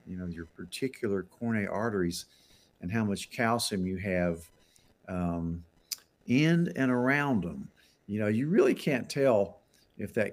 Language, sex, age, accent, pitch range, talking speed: English, male, 50-69, American, 90-110 Hz, 145 wpm